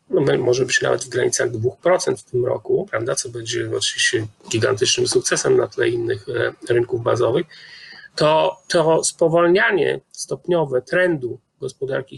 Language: Polish